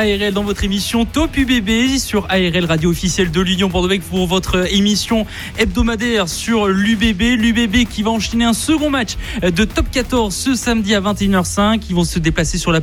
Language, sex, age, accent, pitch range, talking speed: French, male, 20-39, French, 185-230 Hz, 180 wpm